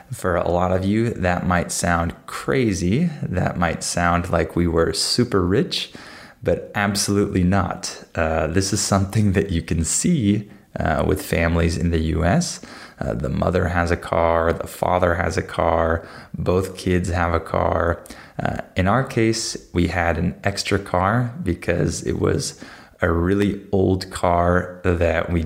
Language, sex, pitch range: Spanish, male, 85-100 Hz